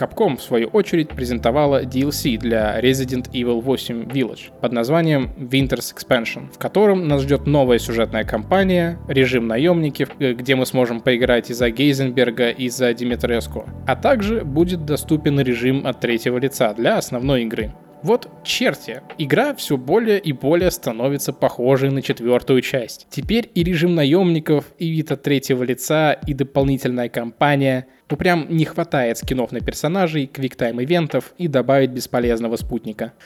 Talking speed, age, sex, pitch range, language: 145 wpm, 20-39, male, 120-150 Hz, Russian